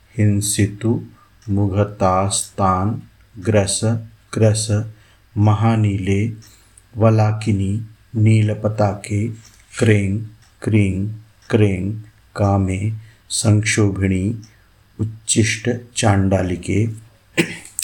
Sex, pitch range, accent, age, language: male, 100-110 Hz, native, 50-69, Hindi